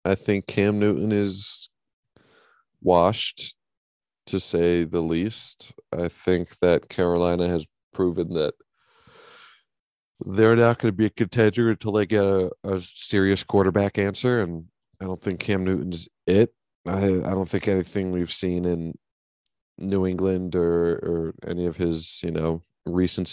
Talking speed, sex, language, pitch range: 145 wpm, male, English, 85-100 Hz